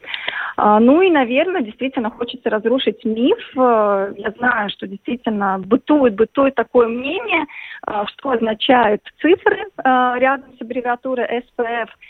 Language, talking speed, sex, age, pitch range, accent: Russian, 110 wpm, female, 30-49, 220-275 Hz, native